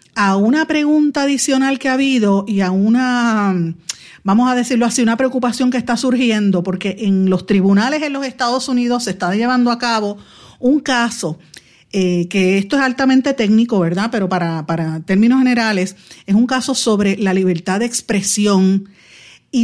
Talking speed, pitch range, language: 170 wpm, 190-235 Hz, Spanish